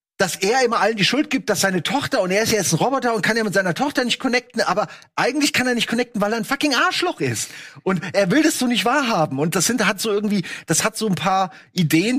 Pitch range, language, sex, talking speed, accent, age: 145-195 Hz, German, male, 275 wpm, German, 40-59